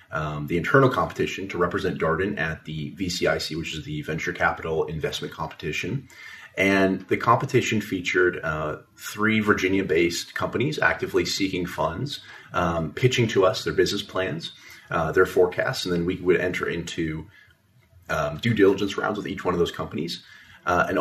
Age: 30-49